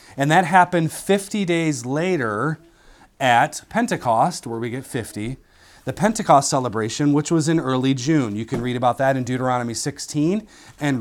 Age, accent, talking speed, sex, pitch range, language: 30-49, American, 160 wpm, male, 115-145 Hz, English